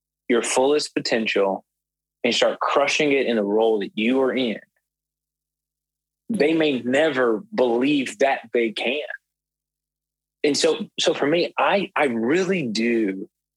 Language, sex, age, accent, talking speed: English, male, 30-49, American, 135 wpm